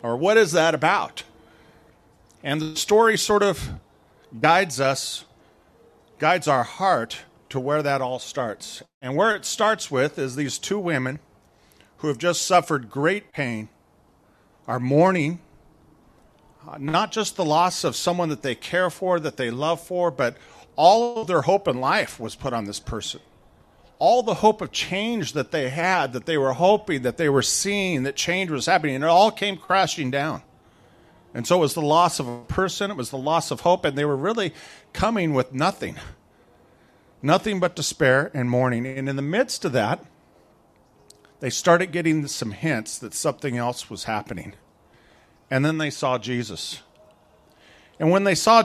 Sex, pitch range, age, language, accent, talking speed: male, 130-180 Hz, 40-59, English, American, 175 wpm